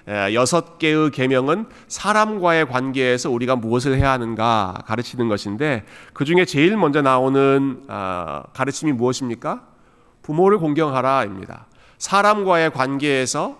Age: 30-49